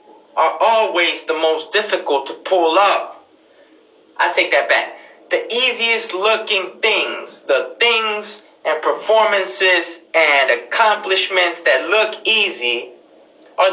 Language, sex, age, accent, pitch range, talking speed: English, male, 30-49, American, 185-225 Hz, 115 wpm